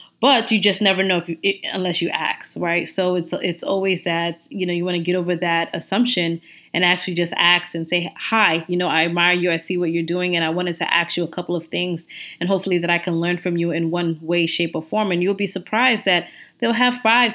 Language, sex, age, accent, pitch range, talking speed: English, female, 20-39, American, 170-200 Hz, 255 wpm